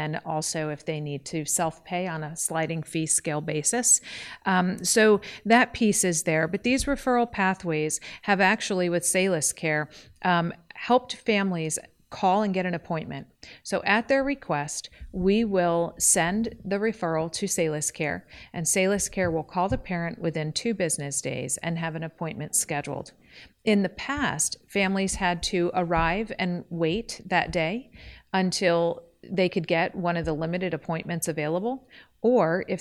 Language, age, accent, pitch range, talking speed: English, 40-59, American, 160-195 Hz, 160 wpm